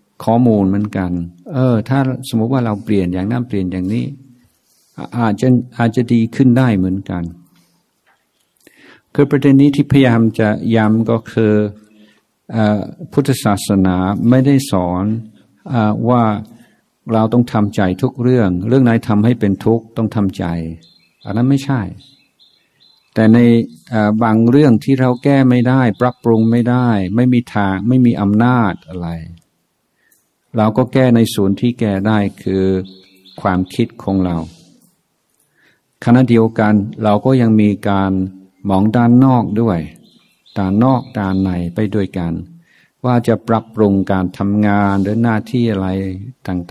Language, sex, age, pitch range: Thai, male, 60-79, 95-120 Hz